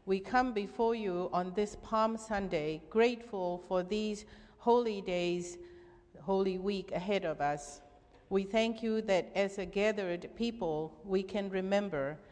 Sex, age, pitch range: female, 50-69, 175-200 Hz